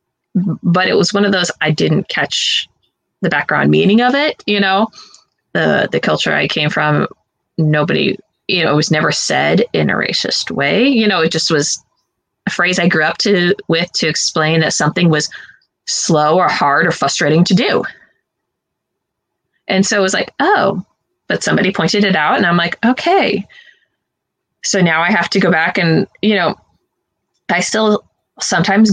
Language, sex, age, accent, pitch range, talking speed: English, female, 20-39, American, 165-210 Hz, 175 wpm